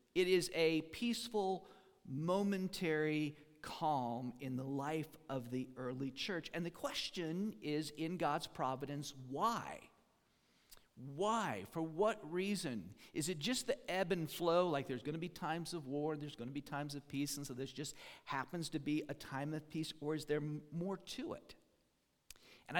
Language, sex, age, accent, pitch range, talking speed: English, male, 50-69, American, 135-175 Hz, 170 wpm